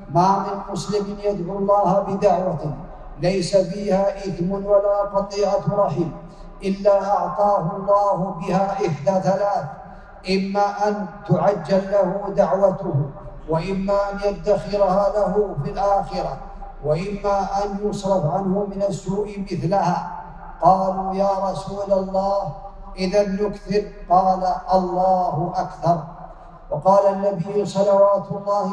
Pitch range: 190-200 Hz